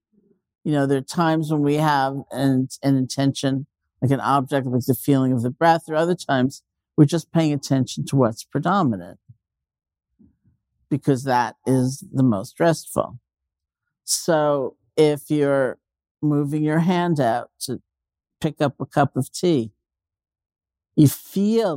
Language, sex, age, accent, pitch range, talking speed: English, male, 50-69, American, 120-150 Hz, 145 wpm